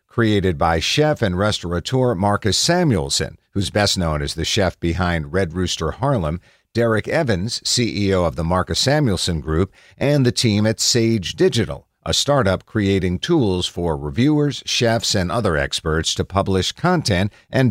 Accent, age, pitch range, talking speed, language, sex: American, 50-69, 85-120 Hz, 155 wpm, English, male